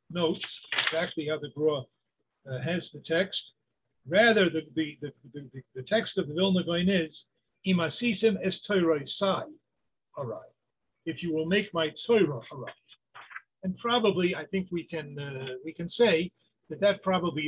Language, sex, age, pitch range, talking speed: English, male, 50-69, 150-195 Hz, 140 wpm